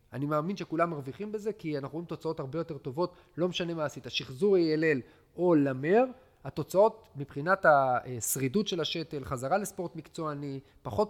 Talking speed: 155 wpm